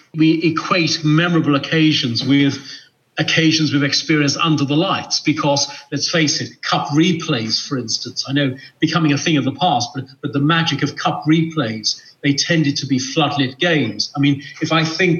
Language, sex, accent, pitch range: English, male, British, 135-160 Hz